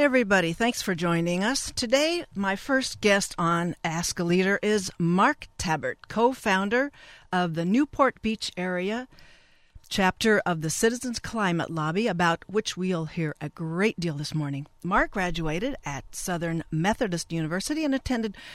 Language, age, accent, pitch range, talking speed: English, 50-69, American, 165-220 Hz, 145 wpm